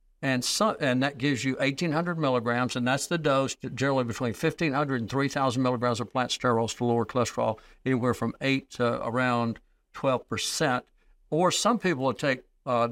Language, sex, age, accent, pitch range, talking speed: English, male, 60-79, American, 125-155 Hz, 170 wpm